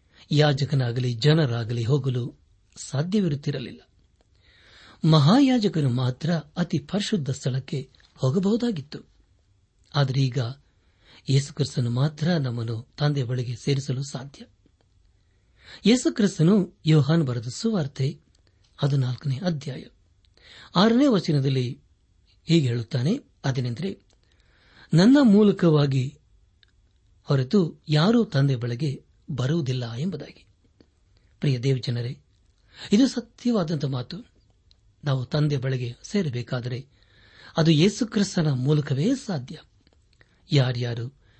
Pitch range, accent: 115-160 Hz, native